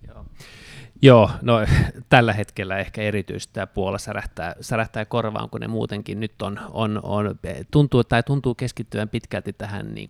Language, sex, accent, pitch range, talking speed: Finnish, male, native, 105-115 Hz, 155 wpm